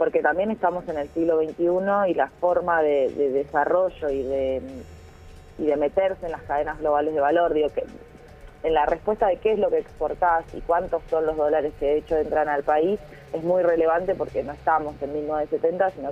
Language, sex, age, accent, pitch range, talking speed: Spanish, female, 20-39, Argentinian, 145-170 Hz, 205 wpm